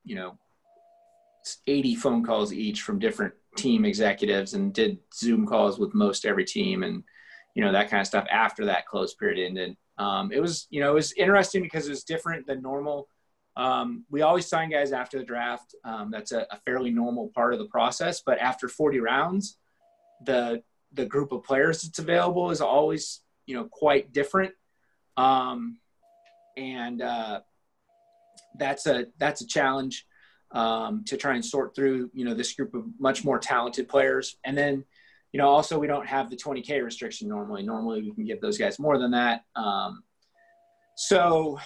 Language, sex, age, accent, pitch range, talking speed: English, male, 30-49, American, 125-195 Hz, 180 wpm